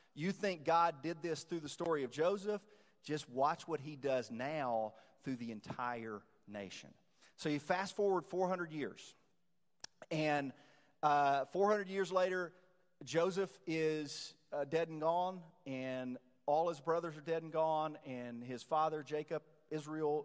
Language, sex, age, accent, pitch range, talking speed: English, male, 40-59, American, 135-170 Hz, 150 wpm